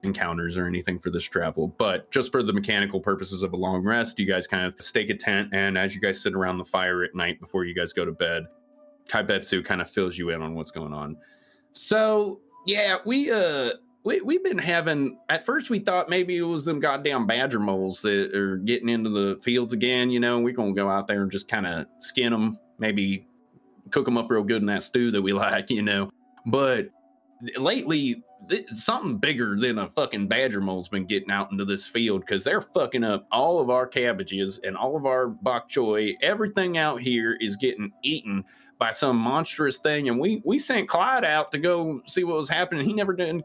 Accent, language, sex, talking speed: American, English, male, 215 wpm